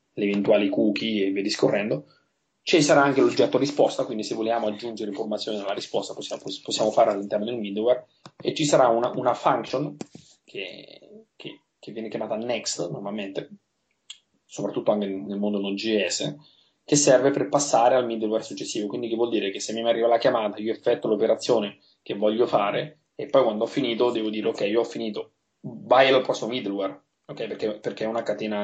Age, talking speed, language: 20-39, 180 wpm, Italian